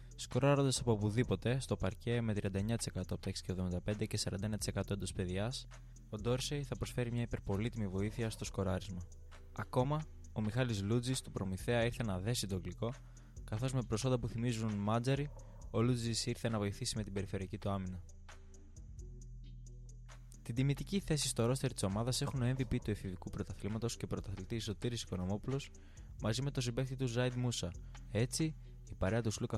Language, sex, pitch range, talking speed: Greek, male, 100-125 Hz, 160 wpm